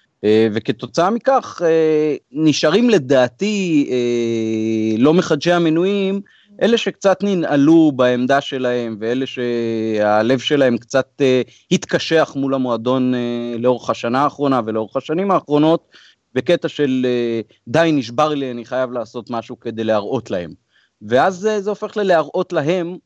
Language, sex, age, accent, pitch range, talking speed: Hebrew, male, 30-49, native, 115-150 Hz, 110 wpm